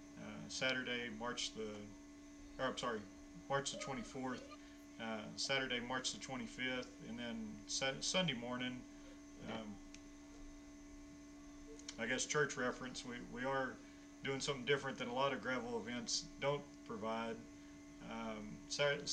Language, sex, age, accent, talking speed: English, male, 40-59, American, 115 wpm